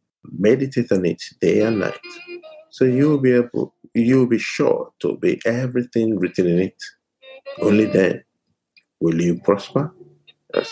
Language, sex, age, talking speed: English, male, 50-69, 145 wpm